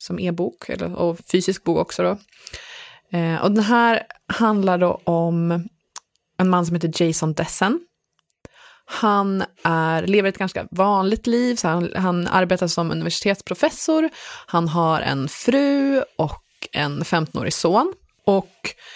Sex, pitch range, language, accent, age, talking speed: female, 170-220 Hz, English, Swedish, 20-39, 135 wpm